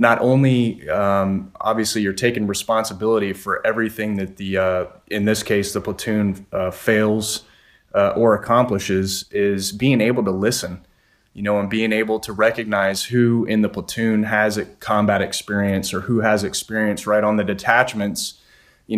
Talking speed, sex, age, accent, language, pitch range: 160 wpm, male, 30-49, American, English, 100-115 Hz